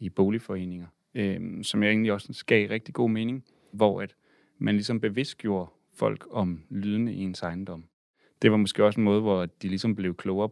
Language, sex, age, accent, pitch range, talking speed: Danish, male, 30-49, native, 90-110 Hz, 190 wpm